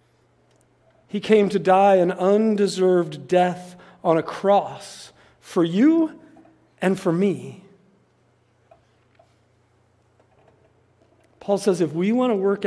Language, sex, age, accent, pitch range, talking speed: English, male, 40-59, American, 170-230 Hz, 105 wpm